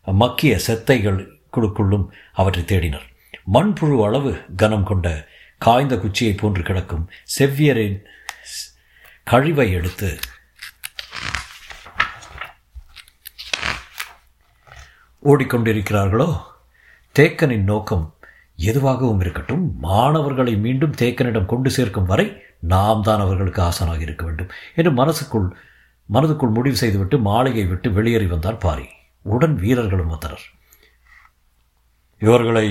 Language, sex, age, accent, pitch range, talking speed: Tamil, male, 50-69, native, 90-115 Hz, 85 wpm